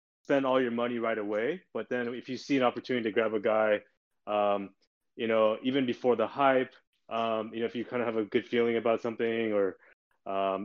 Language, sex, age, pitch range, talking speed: English, male, 20-39, 105-120 Hz, 220 wpm